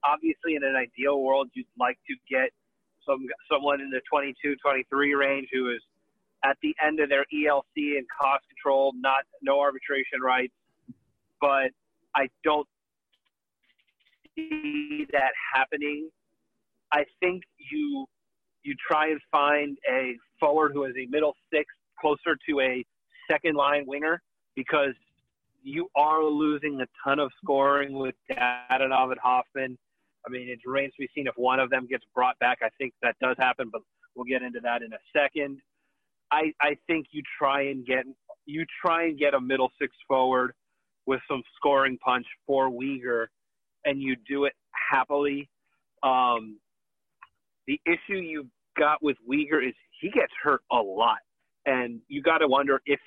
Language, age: English, 30-49